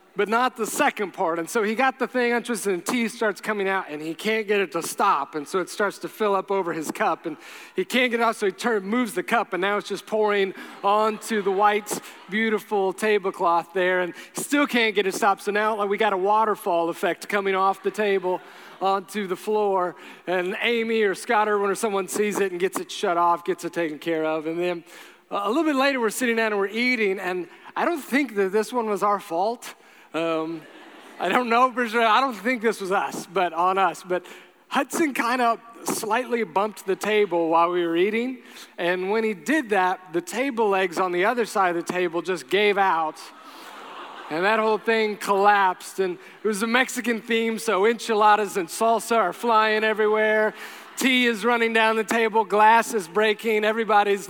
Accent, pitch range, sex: American, 190-225 Hz, male